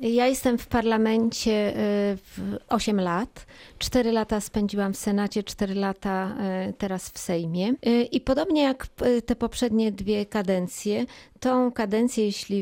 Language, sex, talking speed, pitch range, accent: Polish, female, 125 wpm, 200-230 Hz, native